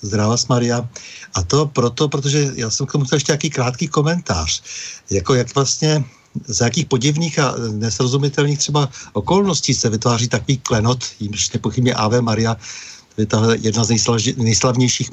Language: Czech